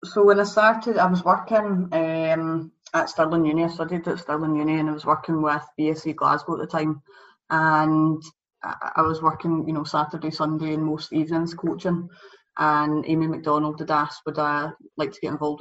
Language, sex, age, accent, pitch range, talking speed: English, female, 20-39, British, 150-165 Hz, 190 wpm